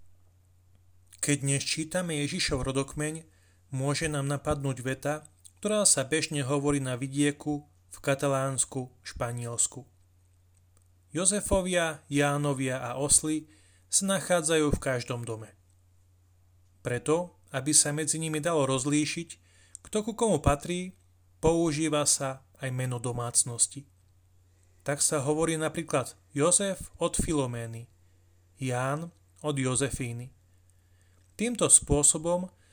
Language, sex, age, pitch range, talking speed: Slovak, male, 30-49, 95-150 Hz, 100 wpm